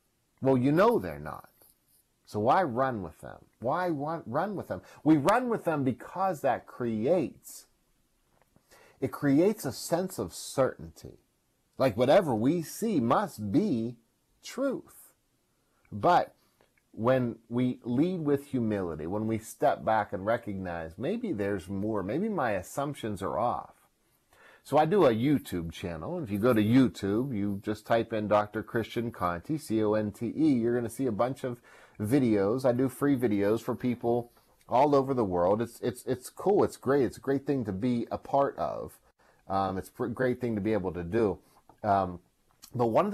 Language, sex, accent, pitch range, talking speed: English, male, American, 100-130 Hz, 165 wpm